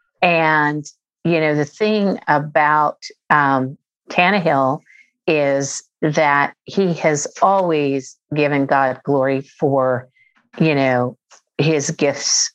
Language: English